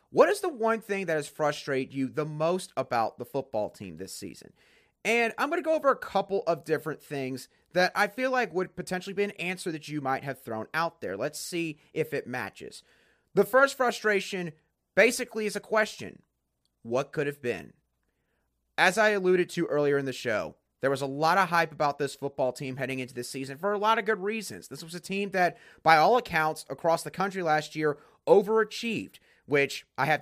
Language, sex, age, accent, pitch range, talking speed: English, male, 30-49, American, 140-205 Hz, 210 wpm